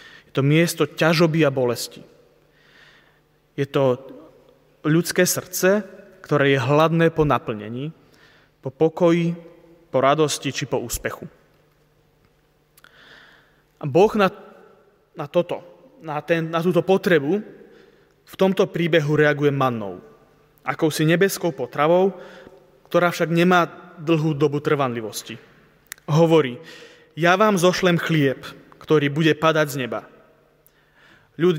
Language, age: Slovak, 30-49